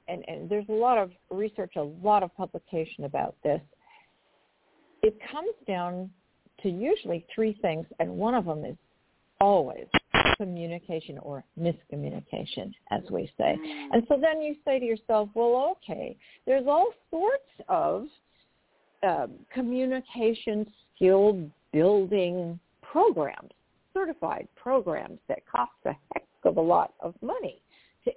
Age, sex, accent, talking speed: 50-69, female, American, 130 wpm